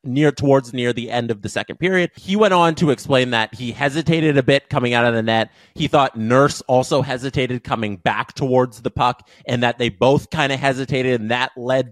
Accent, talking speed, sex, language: American, 220 wpm, male, English